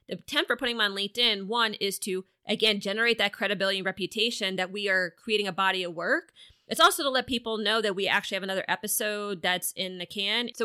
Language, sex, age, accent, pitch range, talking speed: English, female, 30-49, American, 185-235 Hz, 230 wpm